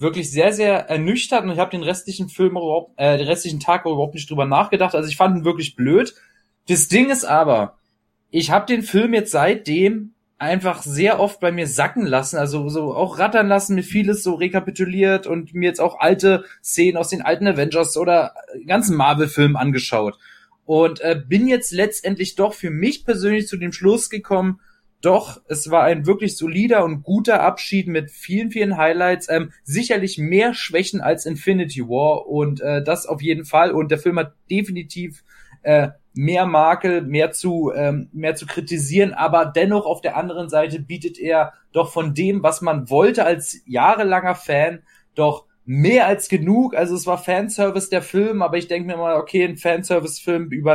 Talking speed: 185 wpm